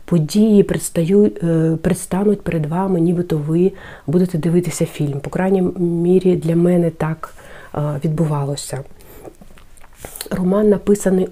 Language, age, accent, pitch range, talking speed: Ukrainian, 40-59, native, 160-190 Hz, 95 wpm